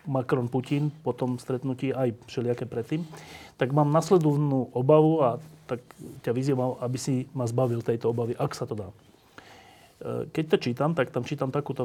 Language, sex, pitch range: Slovak, male, 120-150 Hz